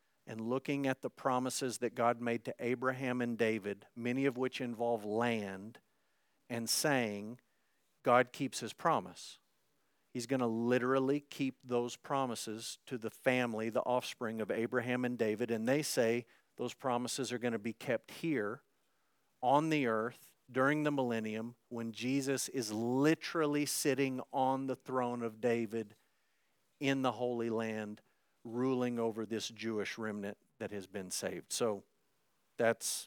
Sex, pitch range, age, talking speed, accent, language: male, 115-135 Hz, 50-69, 145 wpm, American, English